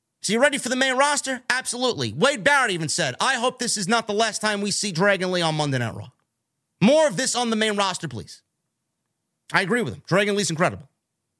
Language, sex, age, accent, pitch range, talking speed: English, male, 30-49, American, 180-230 Hz, 225 wpm